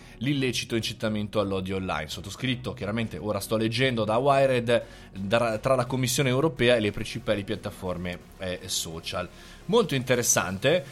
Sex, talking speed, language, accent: male, 125 wpm, Italian, native